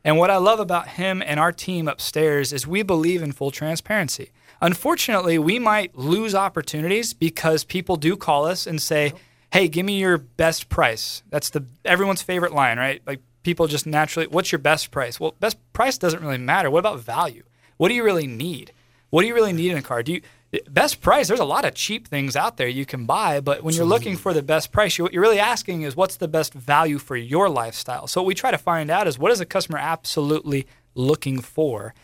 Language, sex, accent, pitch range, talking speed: English, male, American, 145-180 Hz, 225 wpm